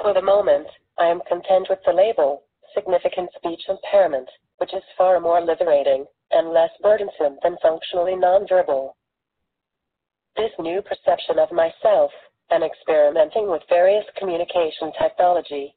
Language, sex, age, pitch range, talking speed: English, female, 30-49, 170-210 Hz, 130 wpm